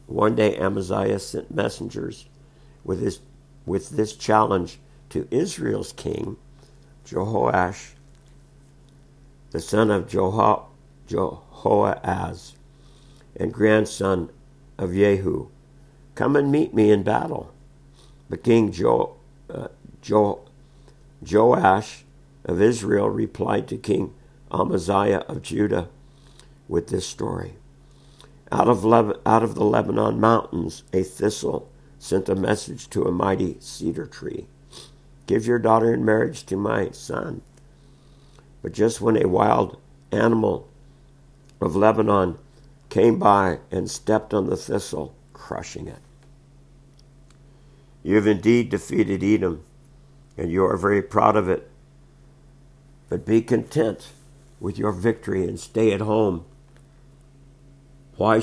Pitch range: 95-135 Hz